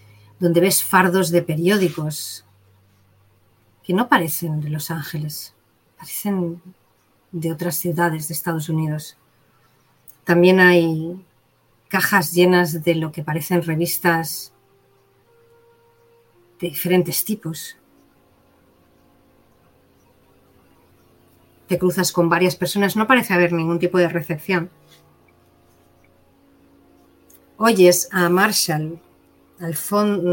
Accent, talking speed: Spanish, 95 wpm